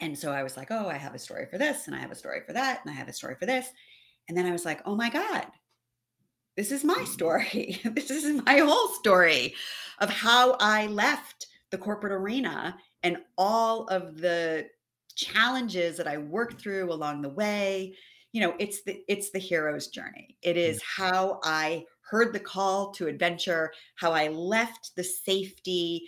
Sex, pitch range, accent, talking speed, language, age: female, 145-200 Hz, American, 195 wpm, English, 40-59